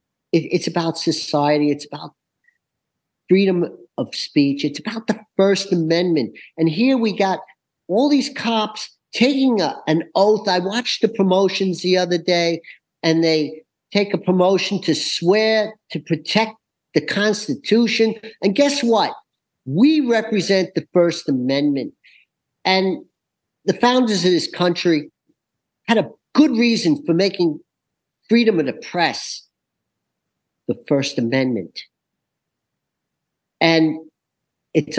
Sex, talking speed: male, 120 wpm